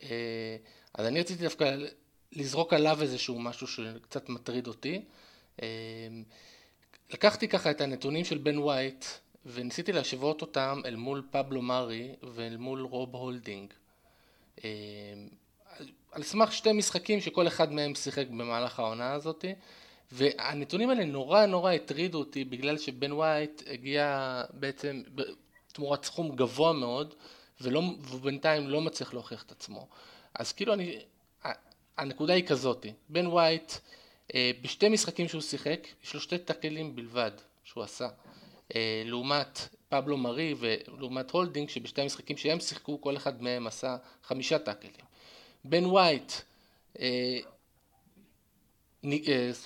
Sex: male